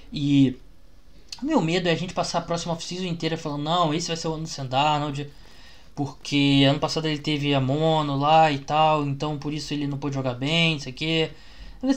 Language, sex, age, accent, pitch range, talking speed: Portuguese, male, 20-39, Brazilian, 130-165 Hz, 215 wpm